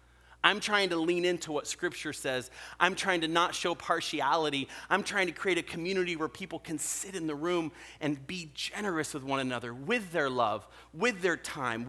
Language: English